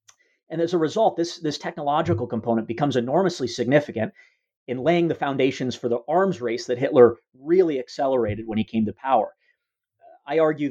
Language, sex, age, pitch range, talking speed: English, male, 30-49, 120-165 Hz, 175 wpm